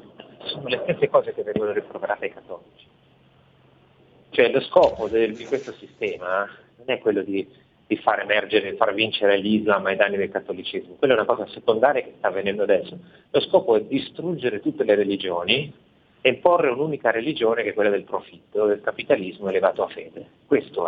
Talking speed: 170 wpm